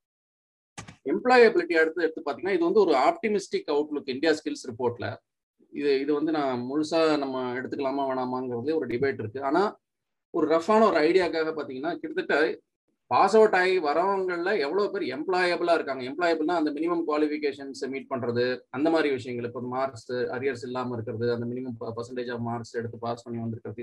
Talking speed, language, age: 150 wpm, Tamil, 30-49